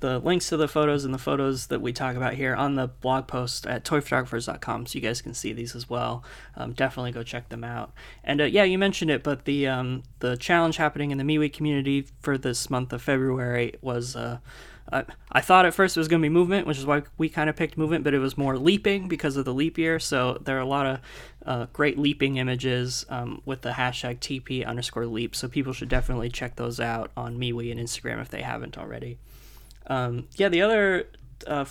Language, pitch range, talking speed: English, 125-150 Hz, 230 wpm